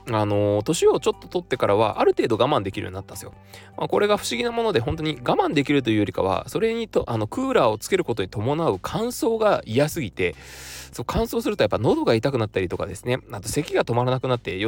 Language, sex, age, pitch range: Japanese, male, 20-39, 100-160 Hz